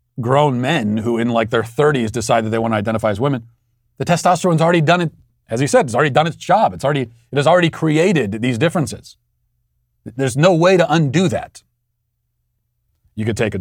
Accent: American